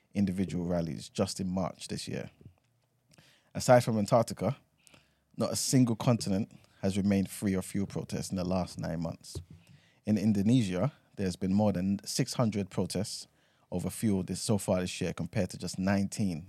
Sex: male